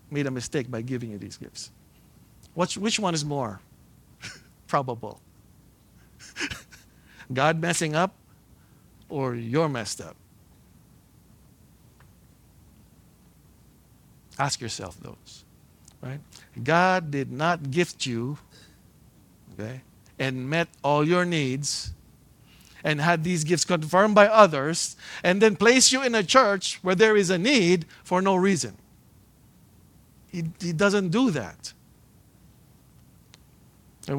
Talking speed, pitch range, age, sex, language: 110 wpm, 125-190 Hz, 50-69, male, English